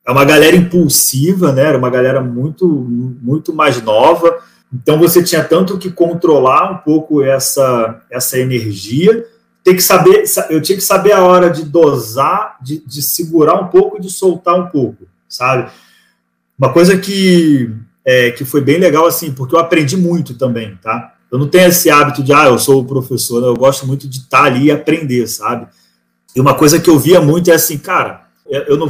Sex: male